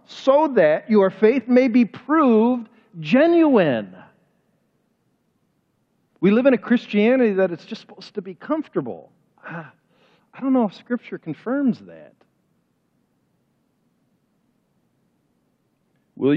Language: English